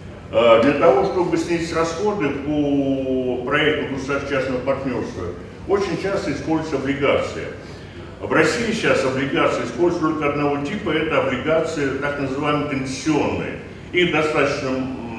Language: Russian